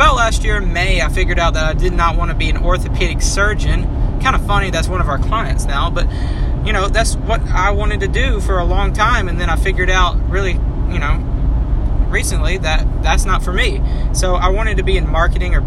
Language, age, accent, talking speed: English, 20-39, American, 240 wpm